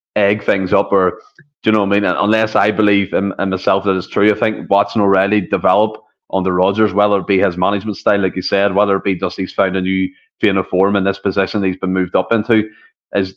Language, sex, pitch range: English, male, 95-115 Hz